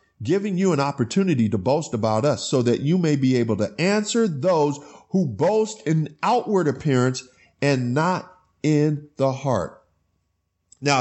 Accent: American